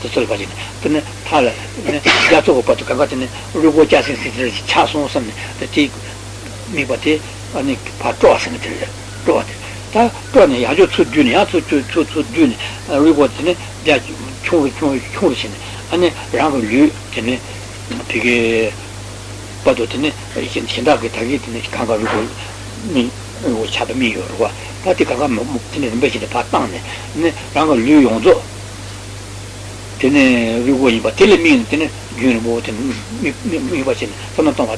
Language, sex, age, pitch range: Italian, male, 60-79, 100-120 Hz